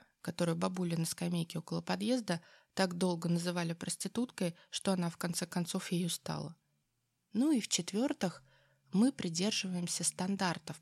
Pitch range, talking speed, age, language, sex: 165-210 Hz, 130 wpm, 20-39, Russian, female